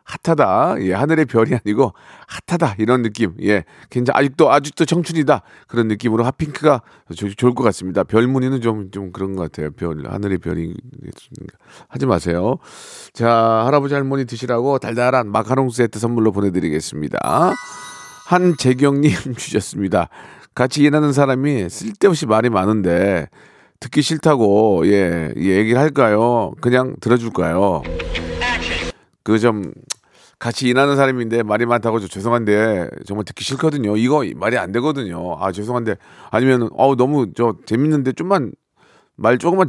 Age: 40-59